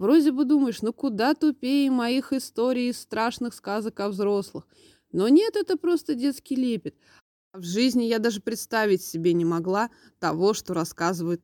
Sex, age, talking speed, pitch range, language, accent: female, 20-39, 155 wpm, 185-275 Hz, Russian, native